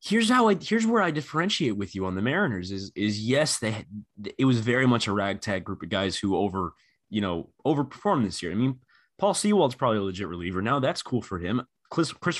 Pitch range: 95-135 Hz